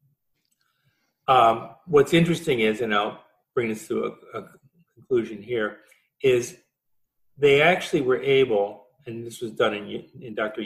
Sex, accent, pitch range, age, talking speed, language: male, American, 115-155 Hz, 50-69, 140 wpm, English